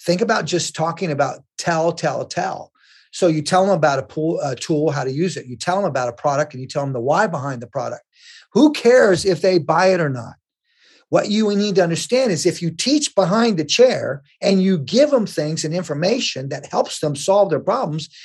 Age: 40-59